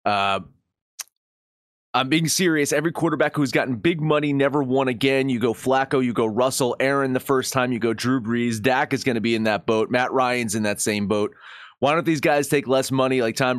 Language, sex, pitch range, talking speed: English, male, 120-150 Hz, 220 wpm